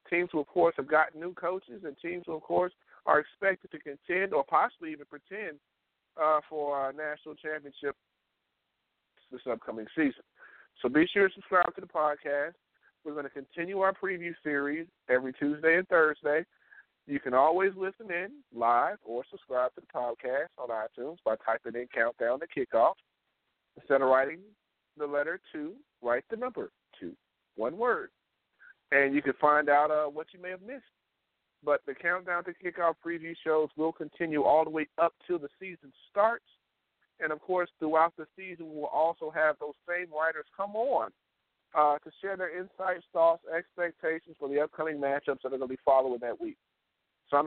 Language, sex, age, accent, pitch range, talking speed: English, male, 40-59, American, 145-180 Hz, 180 wpm